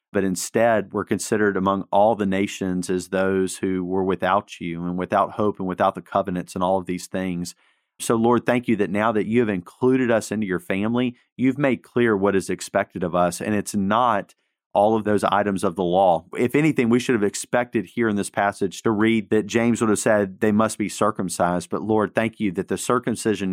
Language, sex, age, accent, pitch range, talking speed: English, male, 40-59, American, 95-115 Hz, 220 wpm